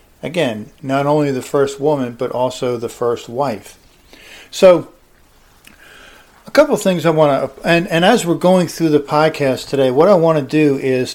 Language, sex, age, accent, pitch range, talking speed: English, male, 50-69, American, 125-150 Hz, 185 wpm